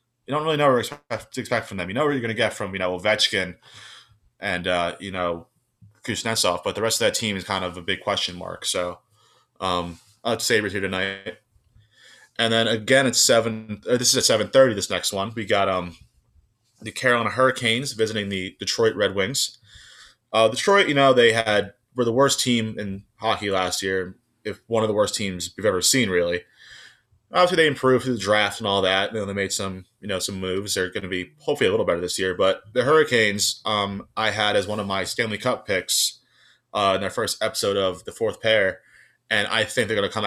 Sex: male